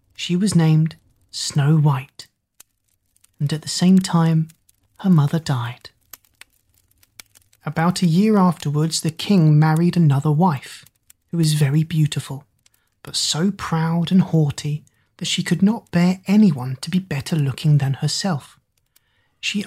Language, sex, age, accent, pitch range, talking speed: English, male, 30-49, British, 125-175 Hz, 135 wpm